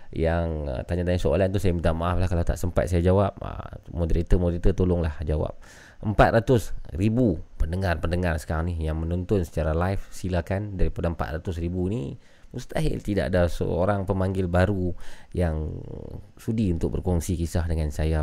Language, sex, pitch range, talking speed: Malay, male, 80-100 Hz, 150 wpm